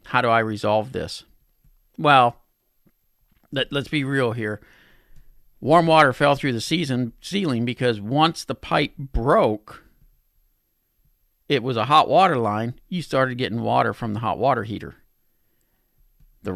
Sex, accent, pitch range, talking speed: male, American, 110-140 Hz, 140 wpm